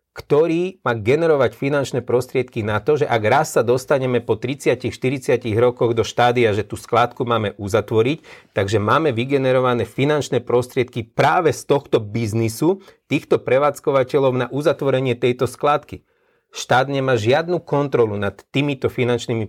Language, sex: Slovak, male